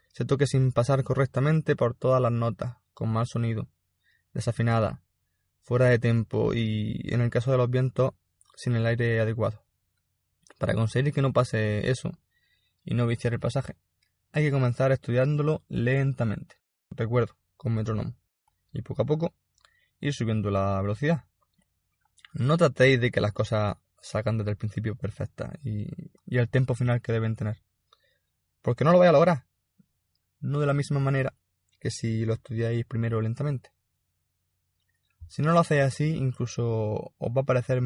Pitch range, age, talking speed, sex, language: 110-135 Hz, 20-39, 160 wpm, male, Spanish